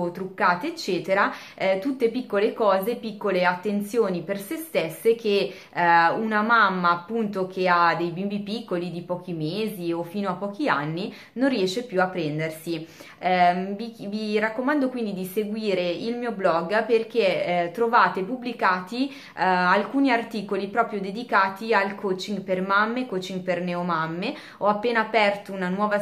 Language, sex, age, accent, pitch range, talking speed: Italian, female, 20-39, native, 185-230 Hz, 150 wpm